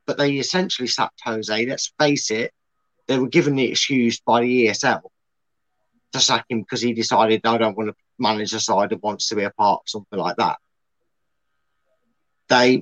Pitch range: 115-150 Hz